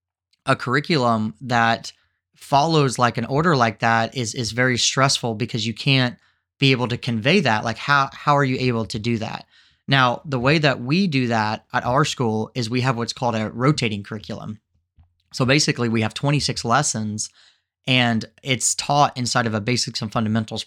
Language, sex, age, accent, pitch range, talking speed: English, male, 30-49, American, 110-130 Hz, 185 wpm